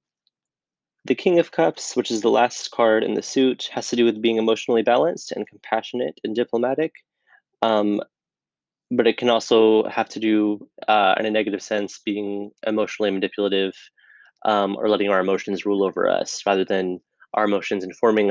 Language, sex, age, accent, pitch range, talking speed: English, male, 20-39, American, 100-120 Hz, 170 wpm